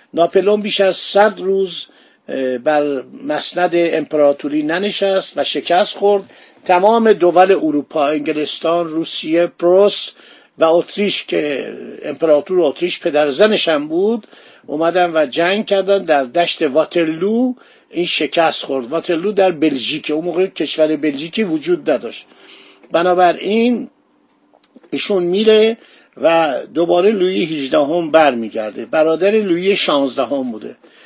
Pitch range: 155-200 Hz